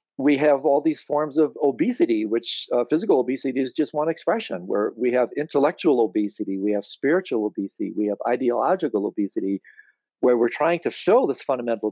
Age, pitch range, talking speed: 50-69, 110-130 Hz, 175 wpm